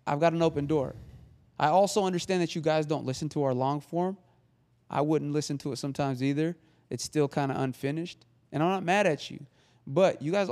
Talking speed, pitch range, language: 215 wpm, 125-150 Hz, English